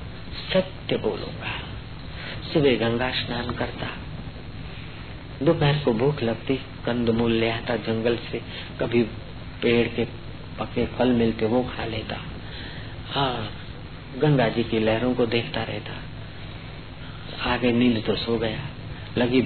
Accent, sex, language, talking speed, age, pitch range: native, male, Hindi, 115 wpm, 50-69, 115-155 Hz